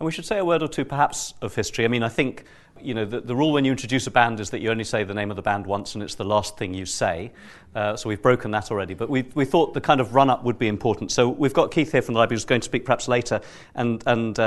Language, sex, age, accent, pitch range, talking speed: English, male, 40-59, British, 105-135 Hz, 315 wpm